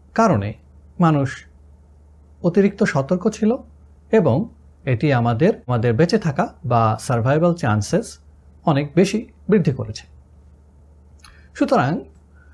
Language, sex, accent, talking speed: Bengali, male, native, 90 wpm